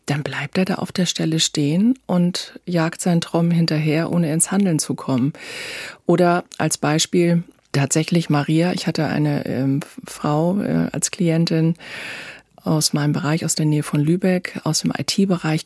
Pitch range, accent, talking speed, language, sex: 155-200 Hz, German, 160 wpm, German, female